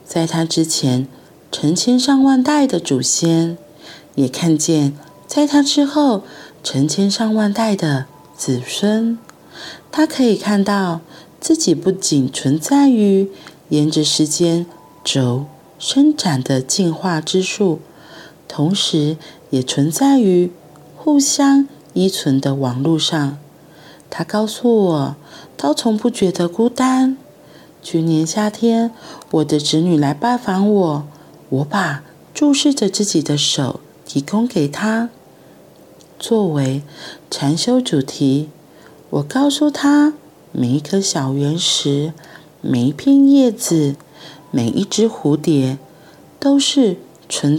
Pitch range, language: 150-225 Hz, Chinese